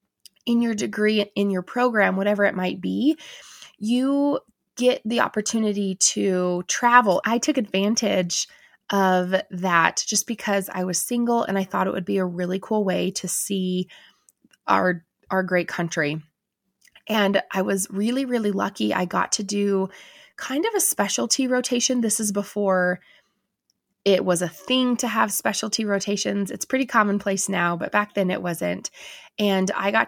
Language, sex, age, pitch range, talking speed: English, female, 20-39, 185-220 Hz, 160 wpm